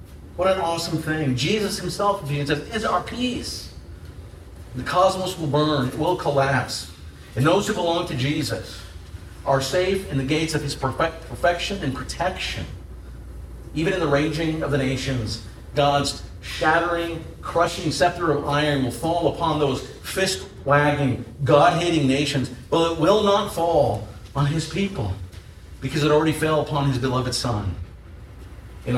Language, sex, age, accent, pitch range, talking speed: English, male, 50-69, American, 100-165 Hz, 145 wpm